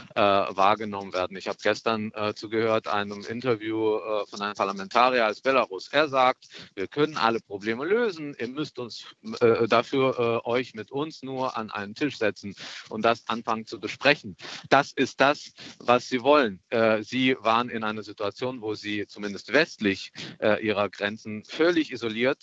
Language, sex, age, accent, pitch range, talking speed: German, male, 50-69, German, 110-135 Hz, 165 wpm